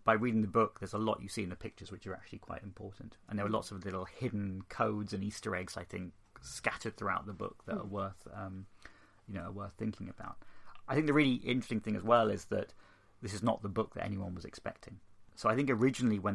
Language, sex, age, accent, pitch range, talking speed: English, male, 30-49, British, 95-115 Hz, 250 wpm